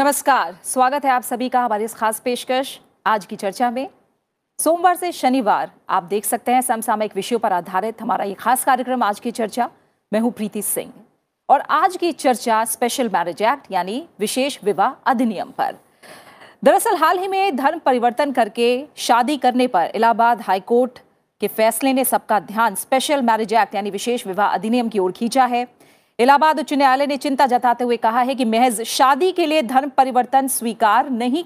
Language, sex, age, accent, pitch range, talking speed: Hindi, female, 40-59, native, 220-275 Hz, 180 wpm